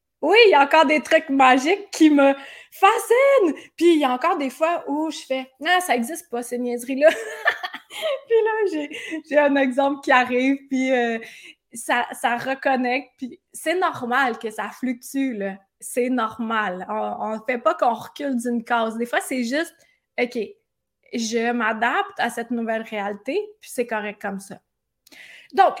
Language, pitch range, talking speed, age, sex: French, 235-320 Hz, 185 wpm, 20-39, female